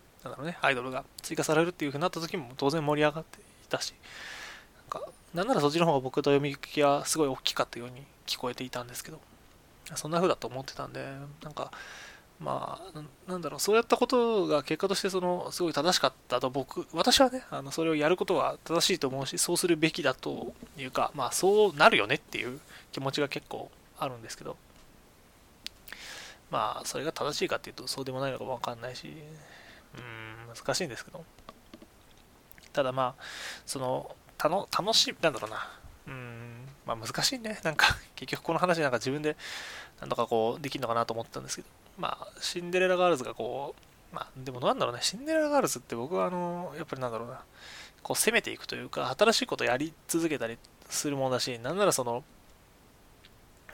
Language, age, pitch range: Japanese, 20-39, 130-175 Hz